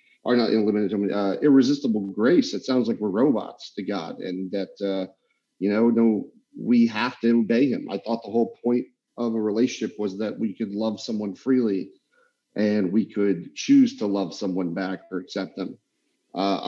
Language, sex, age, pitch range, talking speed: English, male, 40-59, 100-120 Hz, 185 wpm